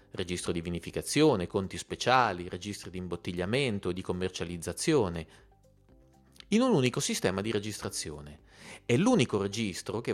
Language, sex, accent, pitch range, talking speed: Italian, male, native, 90-120 Hz, 120 wpm